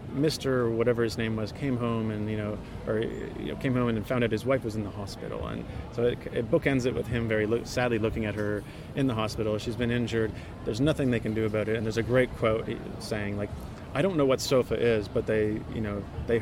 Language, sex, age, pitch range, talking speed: English, male, 30-49, 105-120 Hz, 260 wpm